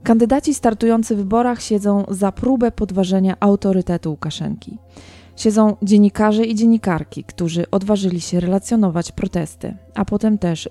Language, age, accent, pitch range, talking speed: Polish, 20-39, native, 175-210 Hz, 125 wpm